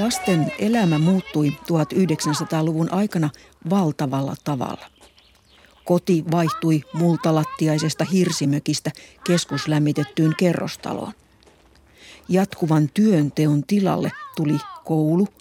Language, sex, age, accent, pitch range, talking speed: Finnish, female, 50-69, native, 150-190 Hz, 70 wpm